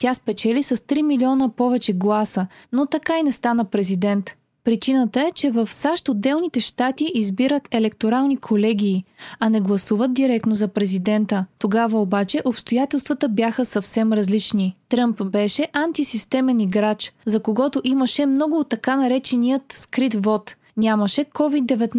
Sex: female